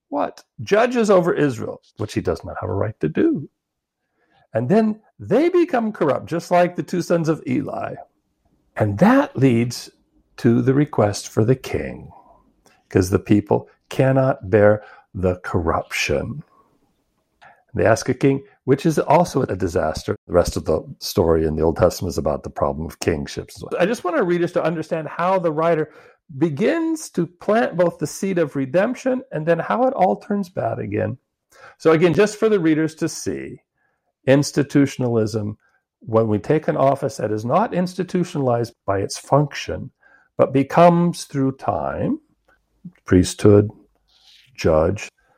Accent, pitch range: American, 115-175 Hz